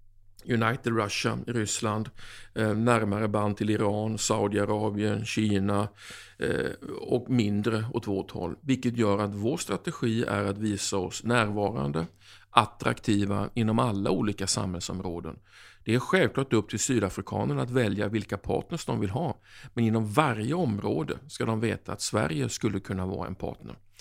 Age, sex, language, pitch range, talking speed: 50-69, male, Swedish, 100-120 Hz, 140 wpm